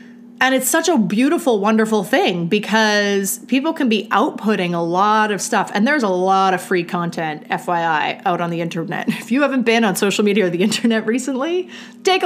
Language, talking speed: English, 195 wpm